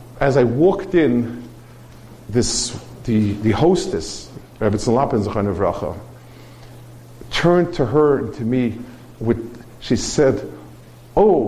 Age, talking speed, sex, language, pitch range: 50-69, 105 wpm, male, English, 120-170 Hz